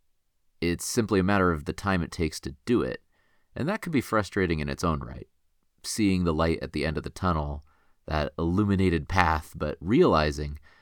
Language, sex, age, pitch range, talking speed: English, male, 30-49, 80-95 Hz, 195 wpm